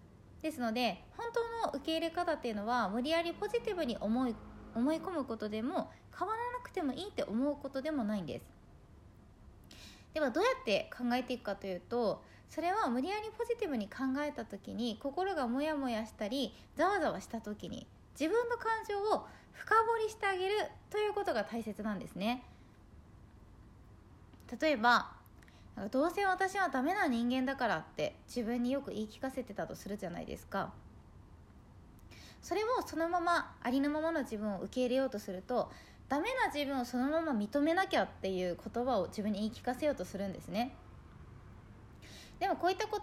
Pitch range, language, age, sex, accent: 210-330 Hz, Japanese, 20-39, female, native